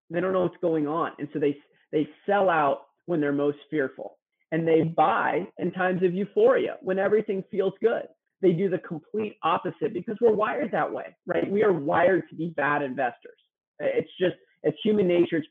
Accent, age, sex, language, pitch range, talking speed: American, 30-49, male, English, 155-195 Hz, 195 wpm